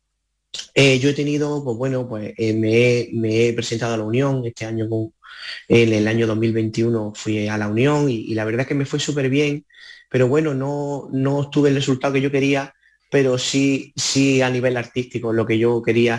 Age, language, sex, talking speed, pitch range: 30-49, Spanish, male, 215 wpm, 120-145 Hz